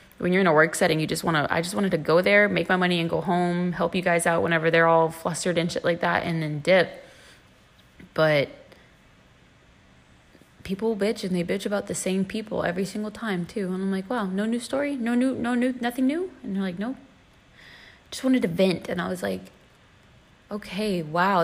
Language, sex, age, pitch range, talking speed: English, female, 20-39, 165-225 Hz, 220 wpm